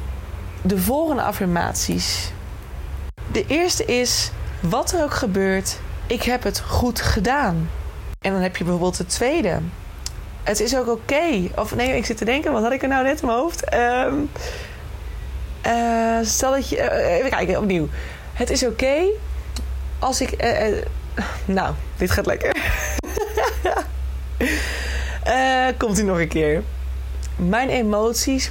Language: Dutch